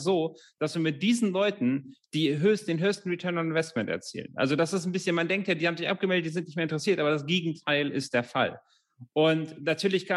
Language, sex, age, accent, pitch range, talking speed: German, male, 30-49, German, 140-175 Hz, 225 wpm